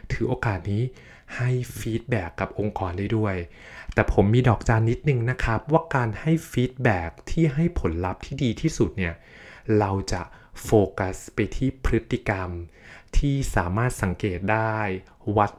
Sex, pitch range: male, 100-130 Hz